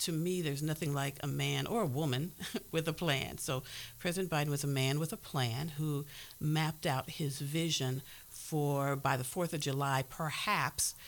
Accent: American